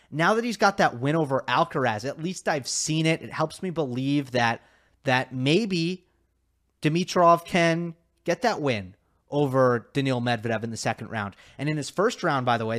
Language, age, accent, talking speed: English, 30-49, American, 190 wpm